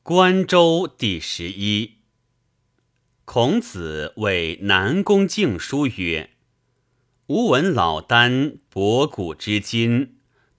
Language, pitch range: Chinese, 100-135 Hz